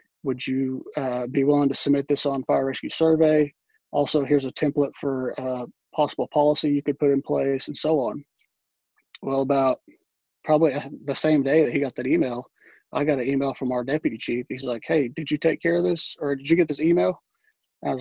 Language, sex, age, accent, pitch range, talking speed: English, male, 20-39, American, 135-155 Hz, 215 wpm